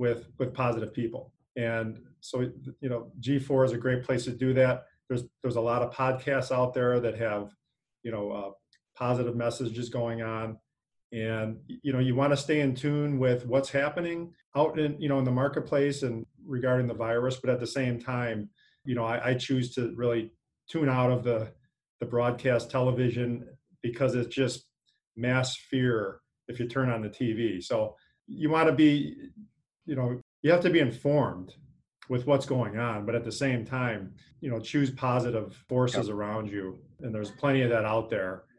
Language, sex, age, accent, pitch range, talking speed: English, male, 40-59, American, 115-135 Hz, 190 wpm